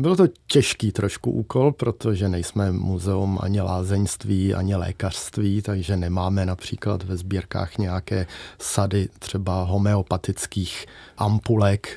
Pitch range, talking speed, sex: 100-120 Hz, 110 wpm, male